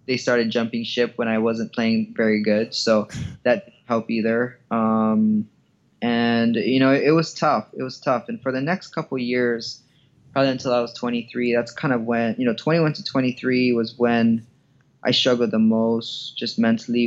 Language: English